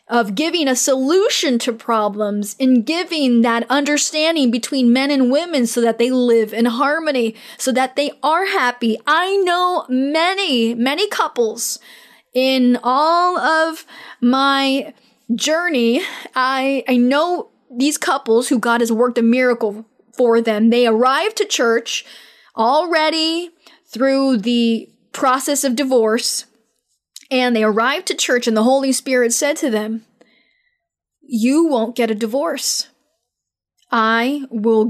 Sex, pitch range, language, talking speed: female, 230-290 Hz, English, 130 wpm